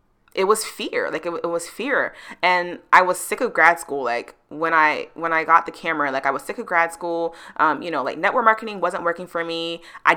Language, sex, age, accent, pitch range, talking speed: English, female, 20-39, American, 160-195 Hz, 240 wpm